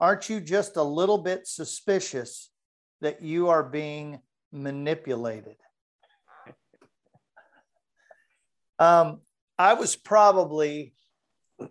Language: English